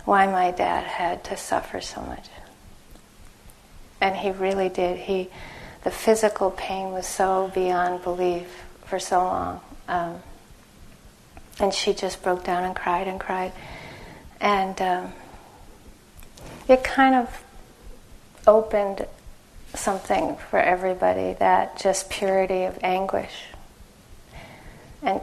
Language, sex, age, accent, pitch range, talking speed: English, female, 40-59, American, 180-200 Hz, 115 wpm